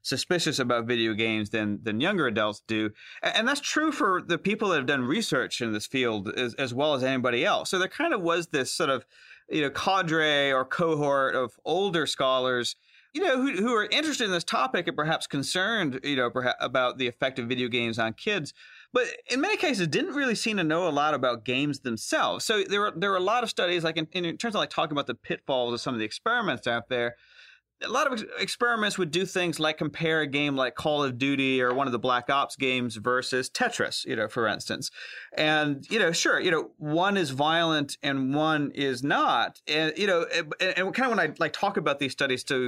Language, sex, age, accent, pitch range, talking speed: English, male, 30-49, American, 125-180 Hz, 230 wpm